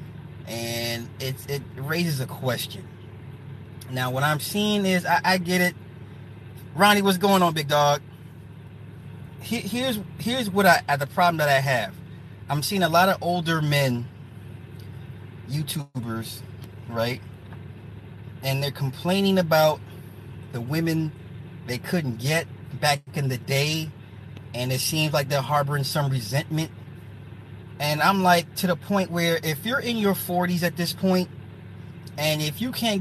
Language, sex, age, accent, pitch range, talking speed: English, male, 30-49, American, 130-175 Hz, 145 wpm